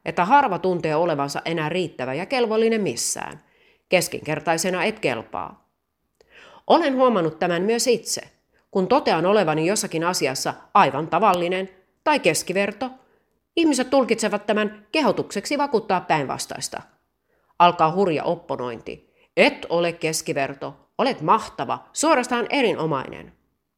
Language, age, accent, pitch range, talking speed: Finnish, 30-49, native, 155-230 Hz, 105 wpm